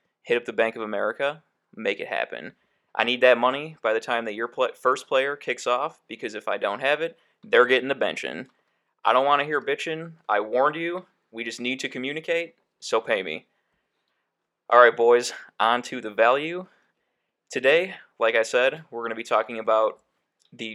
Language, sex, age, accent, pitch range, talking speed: English, male, 20-39, American, 115-150 Hz, 195 wpm